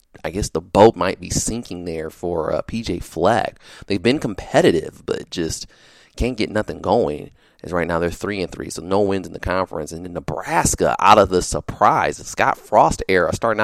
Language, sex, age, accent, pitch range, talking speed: English, male, 30-49, American, 90-125 Hz, 205 wpm